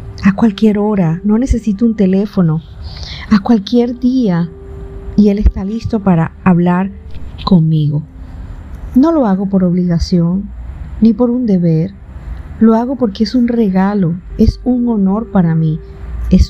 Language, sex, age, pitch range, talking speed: Spanish, female, 50-69, 165-205 Hz, 140 wpm